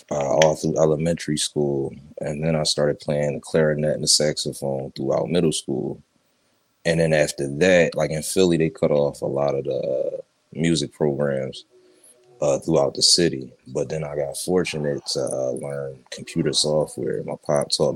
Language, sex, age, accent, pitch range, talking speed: English, male, 20-39, American, 75-85 Hz, 170 wpm